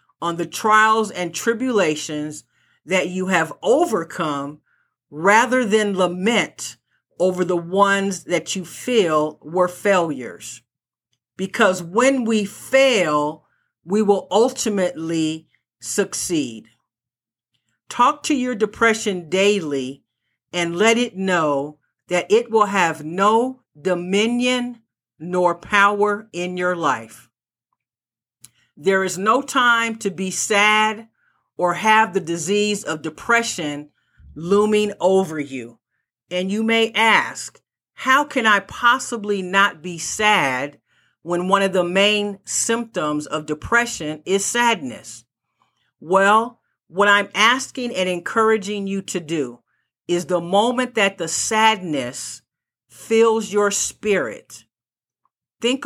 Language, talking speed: English, 110 wpm